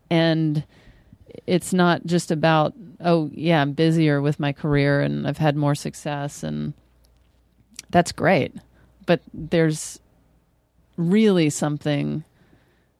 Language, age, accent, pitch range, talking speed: English, 30-49, American, 140-160 Hz, 110 wpm